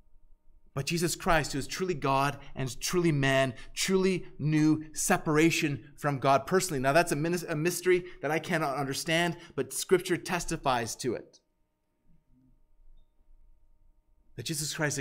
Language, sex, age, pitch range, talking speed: English, male, 30-49, 130-195 Hz, 130 wpm